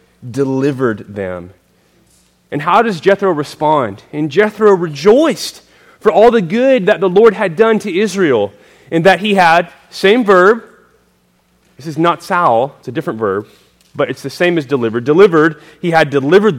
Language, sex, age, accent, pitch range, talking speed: English, male, 30-49, American, 145-225 Hz, 165 wpm